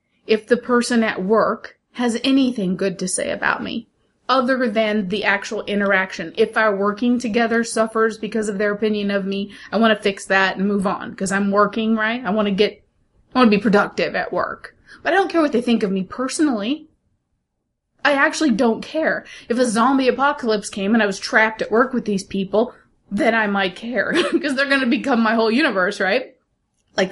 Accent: American